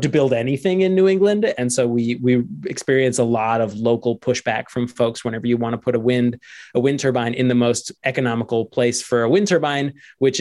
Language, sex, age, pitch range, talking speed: English, male, 20-39, 120-135 Hz, 220 wpm